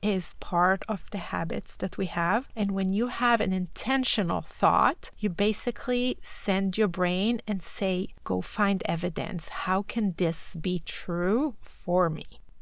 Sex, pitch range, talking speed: female, 180-220 Hz, 150 wpm